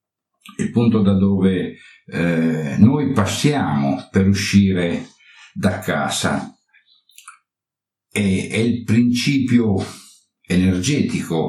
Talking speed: 85 wpm